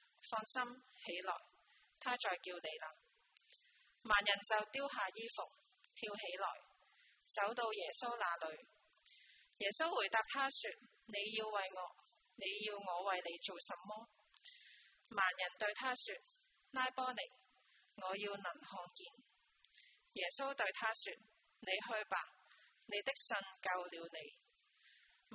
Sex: female